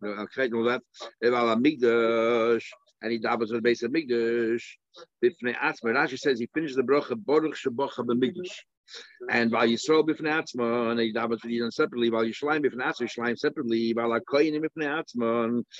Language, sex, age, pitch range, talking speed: English, male, 60-79, 115-155 Hz, 170 wpm